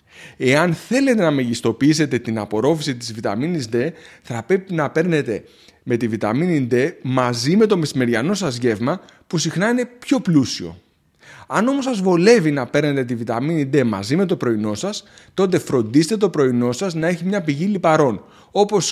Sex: male